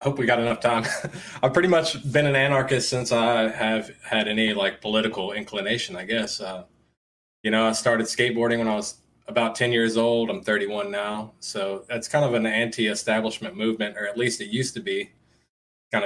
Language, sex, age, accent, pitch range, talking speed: English, male, 20-39, American, 105-125 Hz, 200 wpm